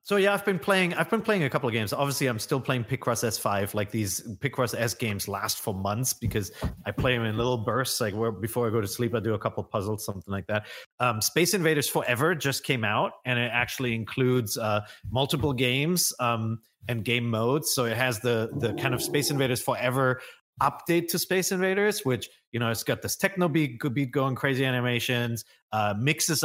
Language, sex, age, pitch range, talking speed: English, male, 30-49, 110-135 Hz, 215 wpm